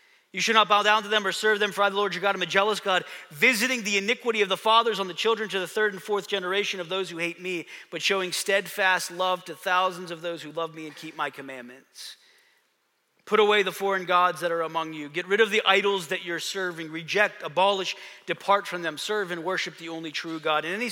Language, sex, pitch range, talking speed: English, male, 170-205 Hz, 250 wpm